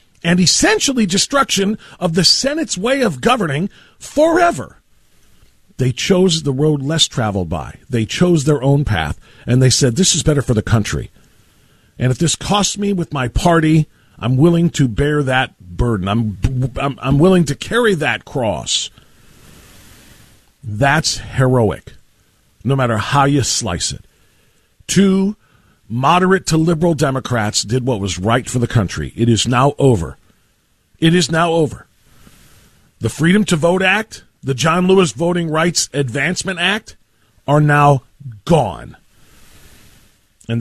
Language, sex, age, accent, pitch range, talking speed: English, male, 50-69, American, 120-185 Hz, 145 wpm